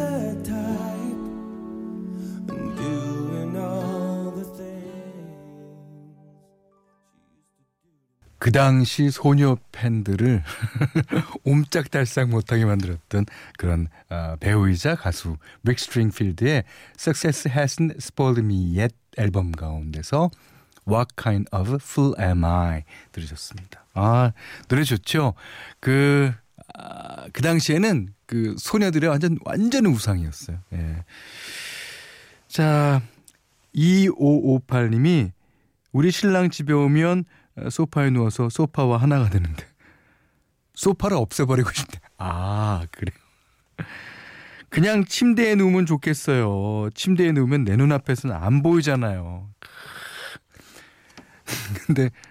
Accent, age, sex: native, 40-59, male